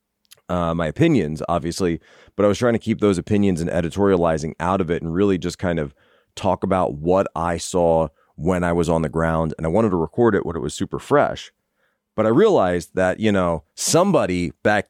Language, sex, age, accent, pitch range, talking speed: English, male, 30-49, American, 80-100 Hz, 210 wpm